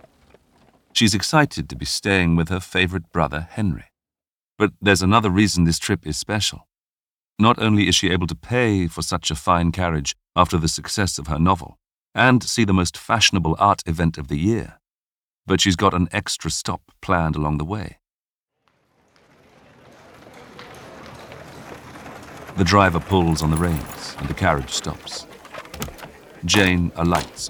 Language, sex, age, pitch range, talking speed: English, male, 50-69, 80-100 Hz, 150 wpm